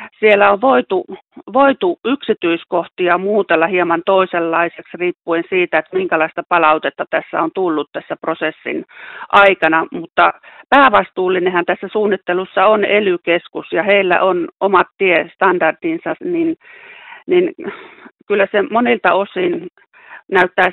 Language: Finnish